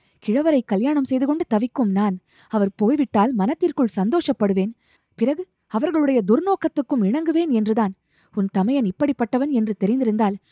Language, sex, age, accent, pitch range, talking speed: Tamil, female, 20-39, native, 205-270 Hz, 115 wpm